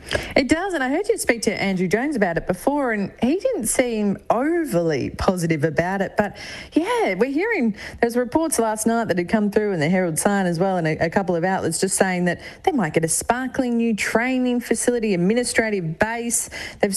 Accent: Australian